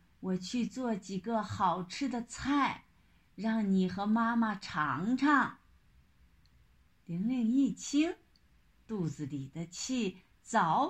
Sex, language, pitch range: female, Chinese, 170-255 Hz